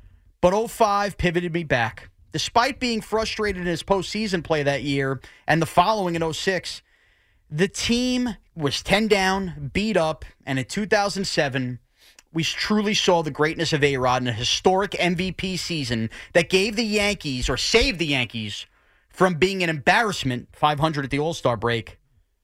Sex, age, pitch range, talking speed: male, 30-49, 125-190 Hz, 155 wpm